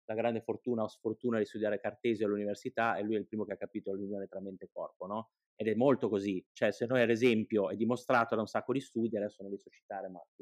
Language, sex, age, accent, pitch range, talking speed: Italian, male, 30-49, native, 105-120 Hz, 265 wpm